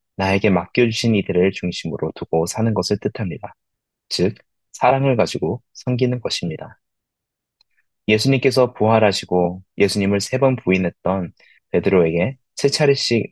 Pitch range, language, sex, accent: 90-115 Hz, Korean, male, native